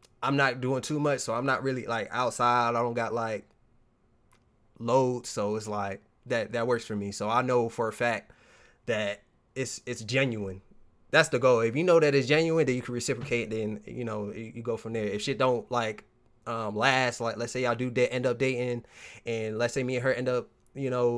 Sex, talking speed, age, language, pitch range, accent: male, 225 wpm, 20-39, English, 115-135 Hz, American